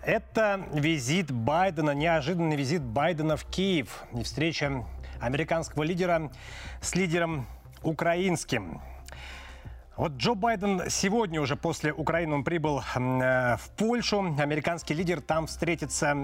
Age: 30-49